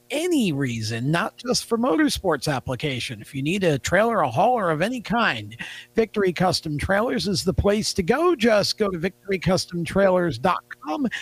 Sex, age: male, 50-69